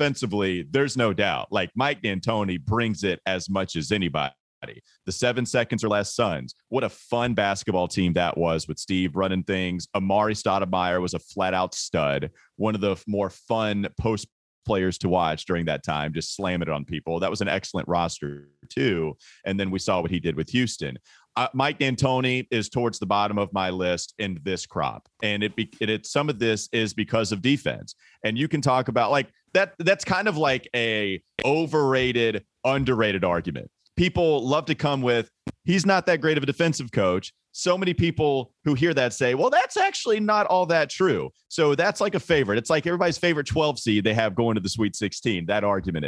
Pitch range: 95-150 Hz